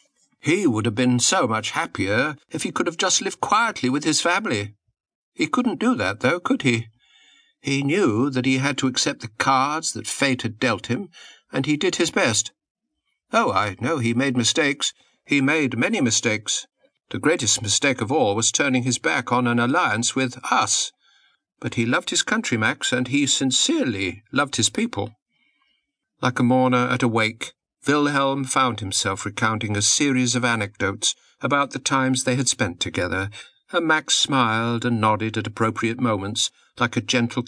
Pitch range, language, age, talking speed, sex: 110-135 Hz, English, 50-69, 180 wpm, male